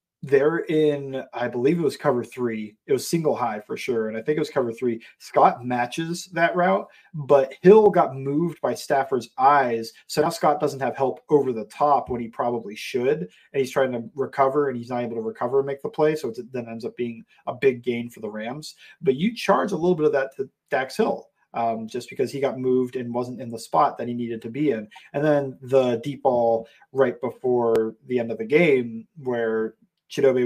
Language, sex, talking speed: English, male, 225 wpm